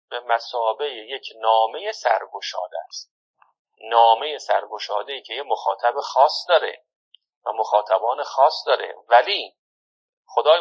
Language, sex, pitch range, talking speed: Persian, male, 115-185 Hz, 105 wpm